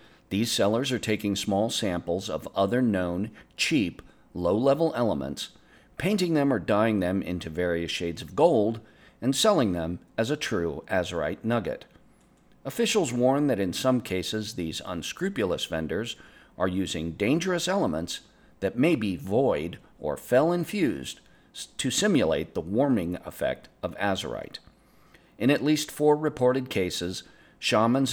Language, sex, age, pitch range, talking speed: English, male, 50-69, 90-130 Hz, 135 wpm